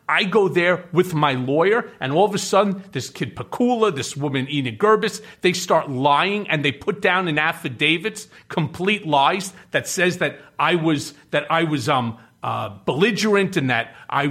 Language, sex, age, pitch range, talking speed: English, male, 40-59, 145-190 Hz, 180 wpm